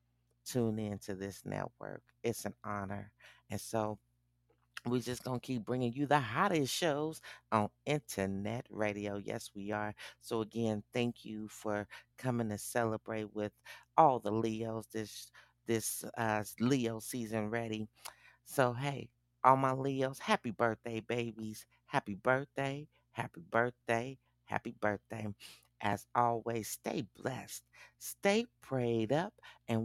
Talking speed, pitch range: 130 wpm, 105-125 Hz